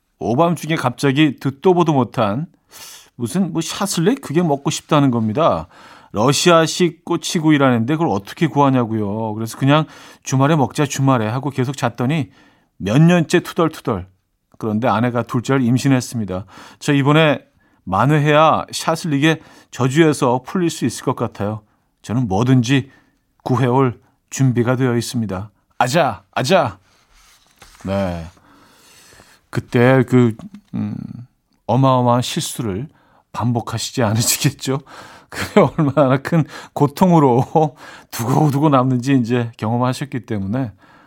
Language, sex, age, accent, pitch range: Korean, male, 40-59, native, 115-155 Hz